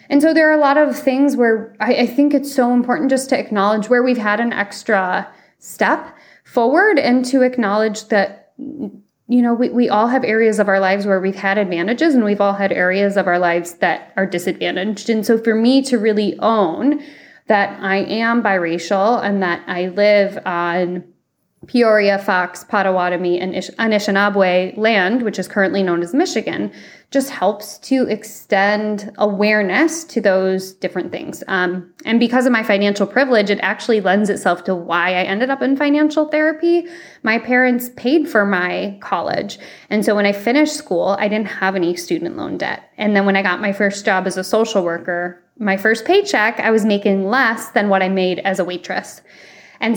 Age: 20-39